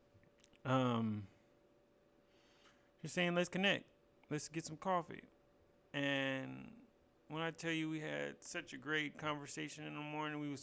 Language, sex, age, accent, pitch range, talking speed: English, male, 30-49, American, 115-145 Hz, 140 wpm